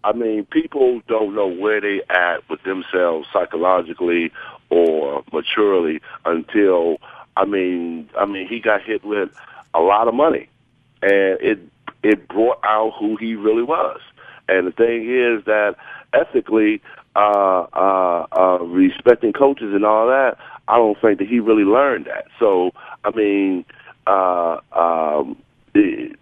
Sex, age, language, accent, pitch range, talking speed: male, 50-69, English, American, 95-120 Hz, 140 wpm